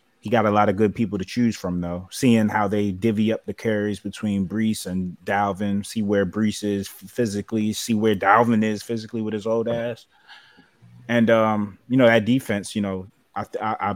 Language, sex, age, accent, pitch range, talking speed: English, male, 20-39, American, 95-110 Hz, 200 wpm